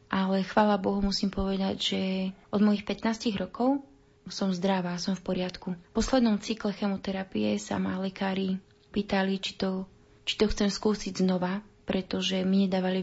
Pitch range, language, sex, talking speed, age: 185-205 Hz, Slovak, female, 150 wpm, 20-39